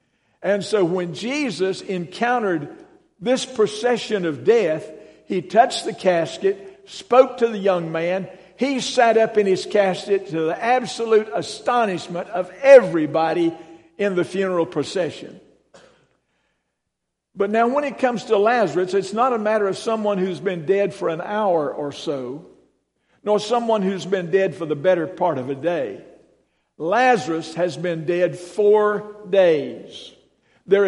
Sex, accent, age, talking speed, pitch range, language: male, American, 60-79, 145 wpm, 175-230 Hz, English